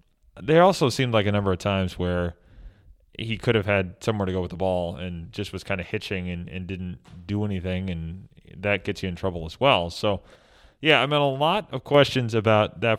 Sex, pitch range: male, 95-115 Hz